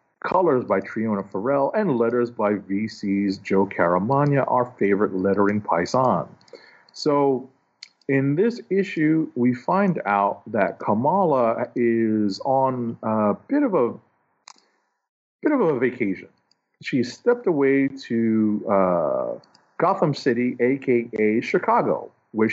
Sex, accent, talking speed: male, American, 115 wpm